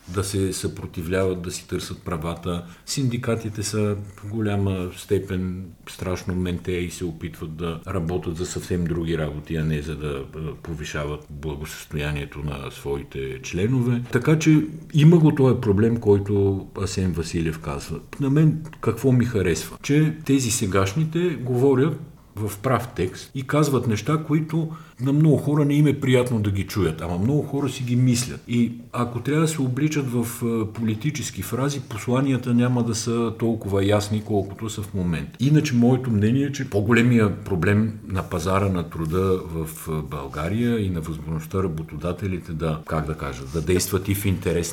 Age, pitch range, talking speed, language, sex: 50-69, 85-125 Hz, 160 wpm, Bulgarian, male